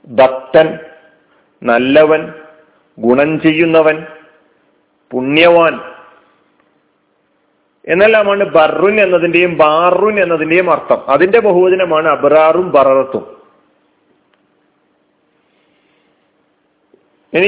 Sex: male